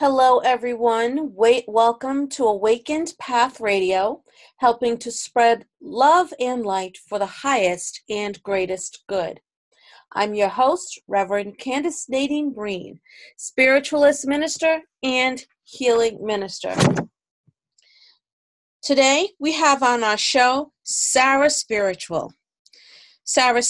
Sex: female